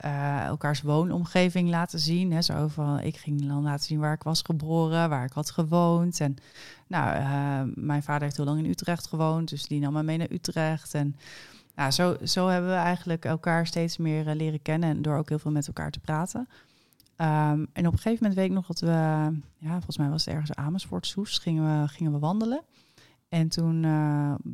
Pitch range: 145-165 Hz